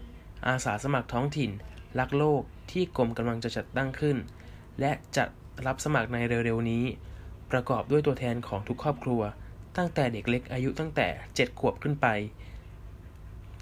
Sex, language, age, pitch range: male, Thai, 20-39, 105-130 Hz